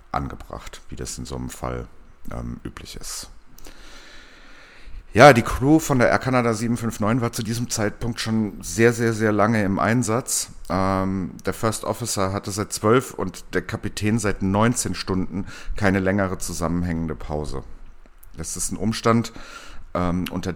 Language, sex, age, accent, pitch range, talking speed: German, male, 50-69, German, 85-110 Hz, 150 wpm